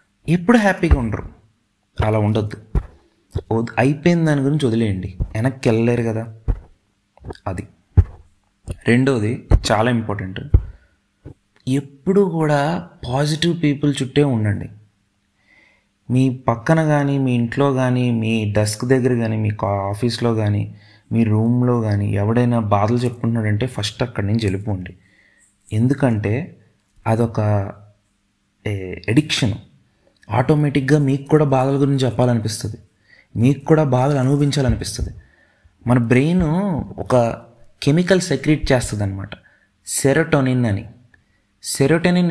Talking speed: 95 wpm